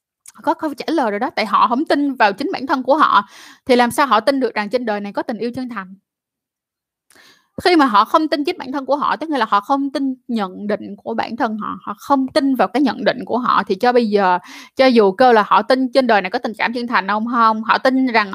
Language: Vietnamese